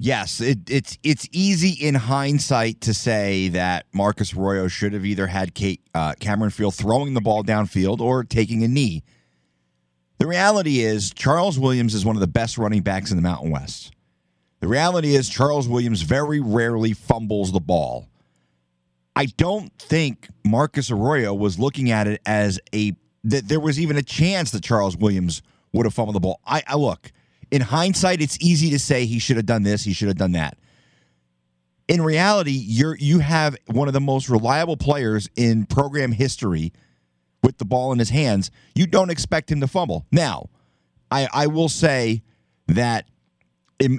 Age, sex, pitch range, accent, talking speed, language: 30-49, male, 100-140 Hz, American, 180 wpm, English